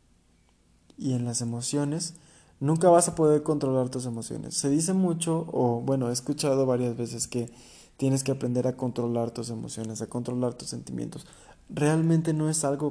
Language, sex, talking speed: Spanish, male, 165 wpm